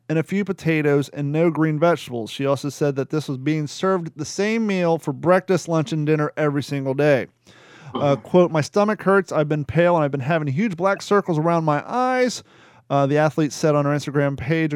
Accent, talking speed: American, 215 wpm